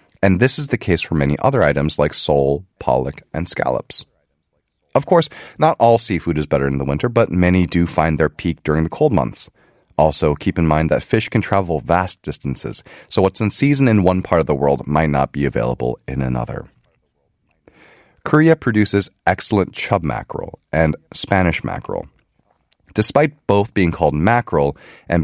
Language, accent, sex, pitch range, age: Korean, American, male, 75-105 Hz, 30-49